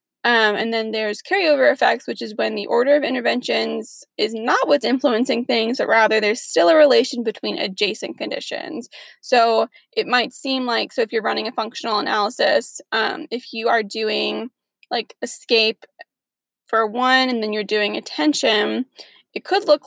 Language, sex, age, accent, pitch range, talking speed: English, female, 20-39, American, 225-315 Hz, 170 wpm